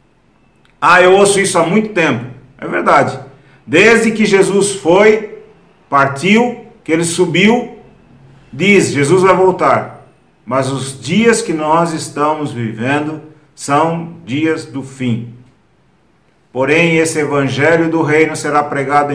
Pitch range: 130-165 Hz